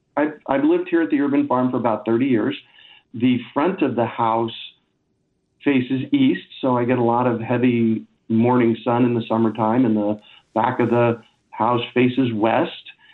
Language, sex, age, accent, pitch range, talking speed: English, male, 50-69, American, 115-145 Hz, 180 wpm